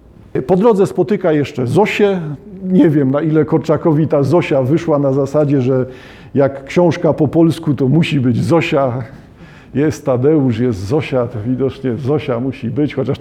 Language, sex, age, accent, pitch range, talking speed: Polish, male, 50-69, native, 130-160 Hz, 150 wpm